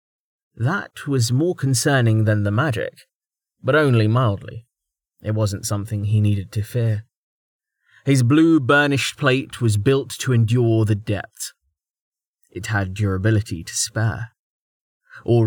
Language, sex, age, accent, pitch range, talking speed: English, male, 20-39, British, 105-135 Hz, 130 wpm